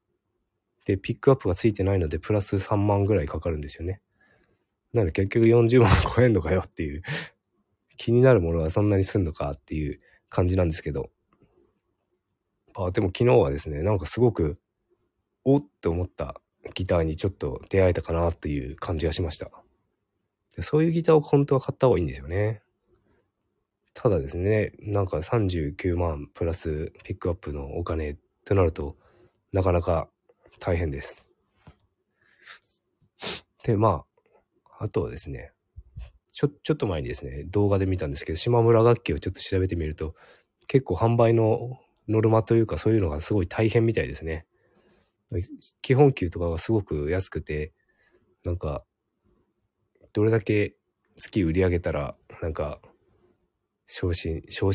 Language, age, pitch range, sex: Japanese, 20-39, 80-110 Hz, male